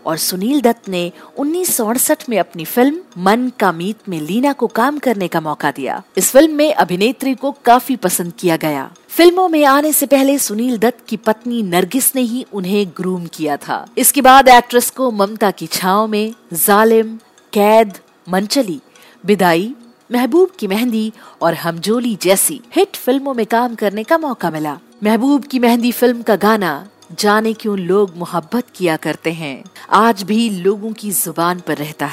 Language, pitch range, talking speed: Hindi, 185-255 Hz, 170 wpm